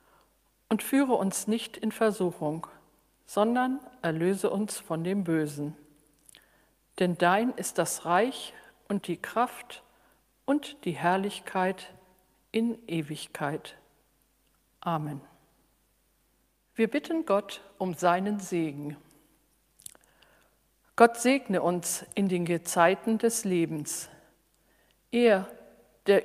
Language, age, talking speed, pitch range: German, 50-69, 95 wpm, 170-230 Hz